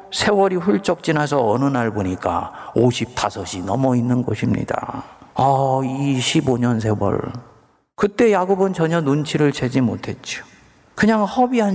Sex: male